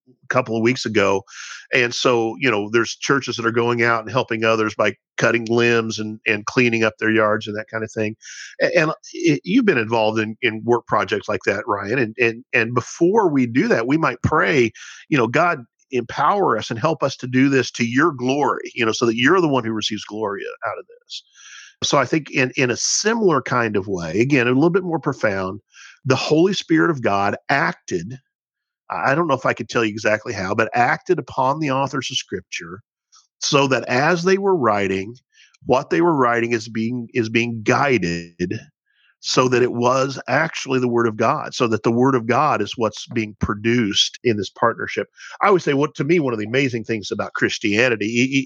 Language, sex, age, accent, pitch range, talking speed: English, male, 50-69, American, 110-135 Hz, 215 wpm